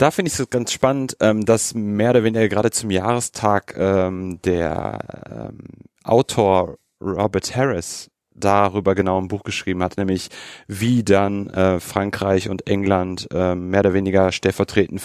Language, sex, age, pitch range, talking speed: German, male, 30-49, 90-105 Hz, 150 wpm